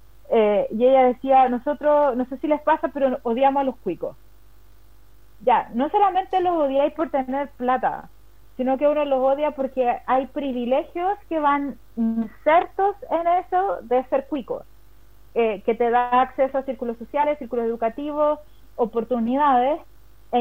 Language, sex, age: Spanish, female, 30-49